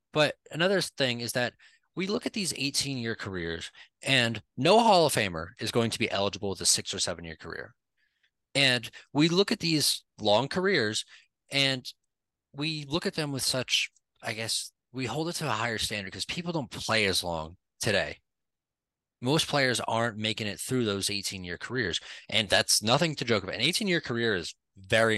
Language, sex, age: English, male, 20-39